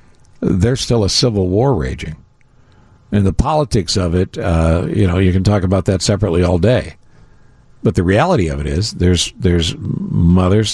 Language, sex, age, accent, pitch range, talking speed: English, male, 60-79, American, 85-105 Hz, 175 wpm